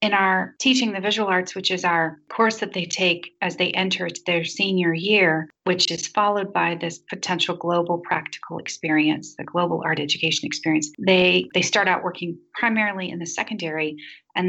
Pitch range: 170-200 Hz